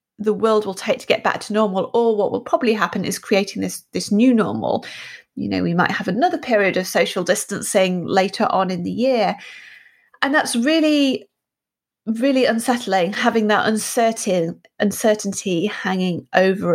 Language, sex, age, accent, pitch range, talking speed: English, female, 30-49, British, 195-250 Hz, 165 wpm